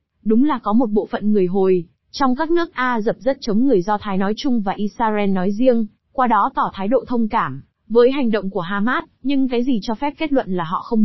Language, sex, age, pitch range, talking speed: Vietnamese, female, 20-39, 200-255 Hz, 250 wpm